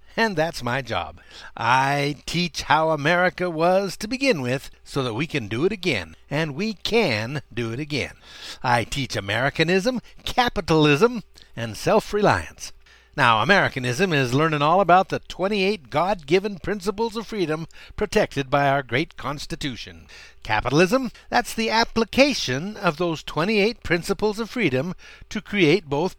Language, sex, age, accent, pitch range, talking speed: English, male, 60-79, American, 125-195 Hz, 140 wpm